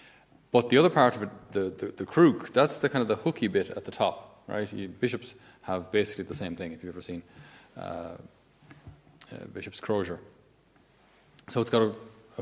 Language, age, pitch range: English, 30-49, 100-125 Hz